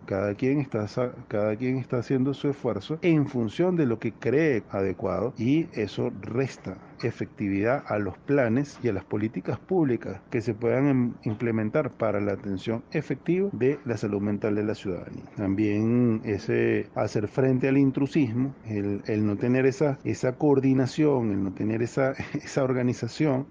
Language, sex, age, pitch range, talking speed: Spanish, male, 40-59, 105-135 Hz, 155 wpm